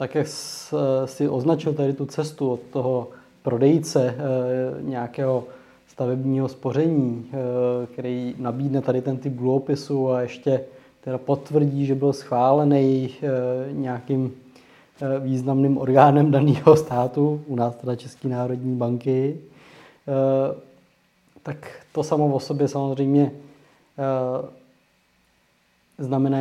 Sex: male